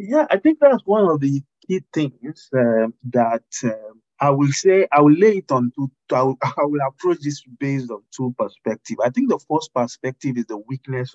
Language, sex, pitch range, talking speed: English, male, 115-150 Hz, 200 wpm